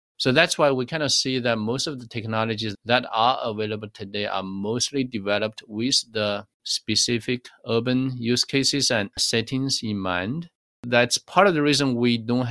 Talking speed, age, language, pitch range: 175 wpm, 50-69, English, 105-125 Hz